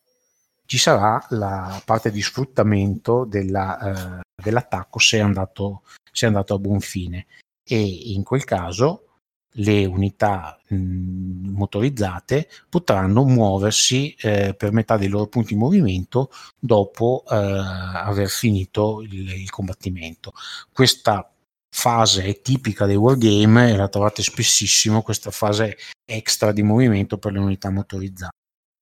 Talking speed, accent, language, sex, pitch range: 130 wpm, native, Italian, male, 95-115 Hz